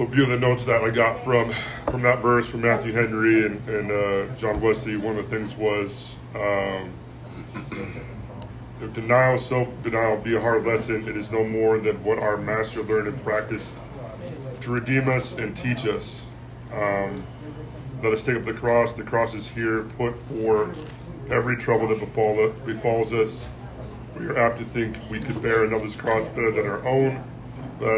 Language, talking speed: English, 180 wpm